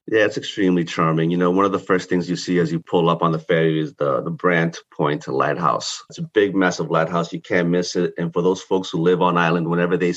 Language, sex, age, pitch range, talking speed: English, male, 30-49, 85-95 Hz, 265 wpm